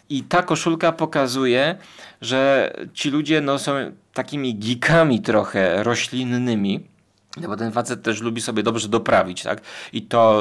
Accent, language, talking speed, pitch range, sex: native, Polish, 140 wpm, 115-155 Hz, male